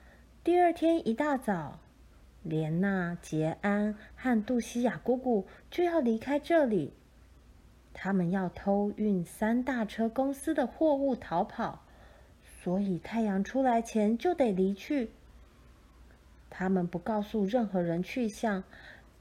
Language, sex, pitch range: Chinese, female, 170-245 Hz